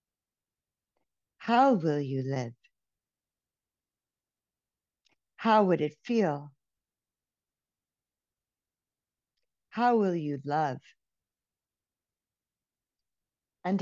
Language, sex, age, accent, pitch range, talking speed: English, female, 60-79, American, 140-200 Hz, 55 wpm